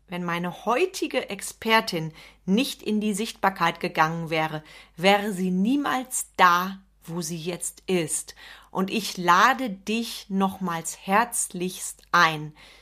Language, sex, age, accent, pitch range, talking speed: German, female, 40-59, German, 180-215 Hz, 115 wpm